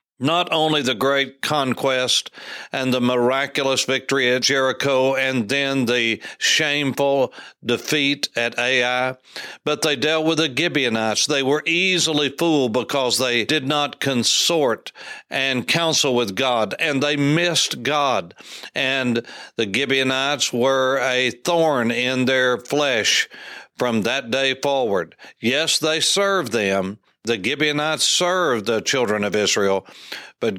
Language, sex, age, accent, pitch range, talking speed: English, male, 60-79, American, 125-145 Hz, 130 wpm